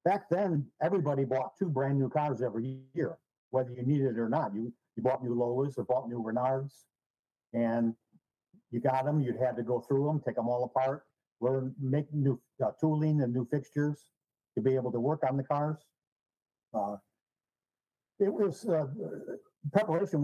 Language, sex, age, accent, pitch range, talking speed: English, male, 50-69, American, 125-145 Hz, 180 wpm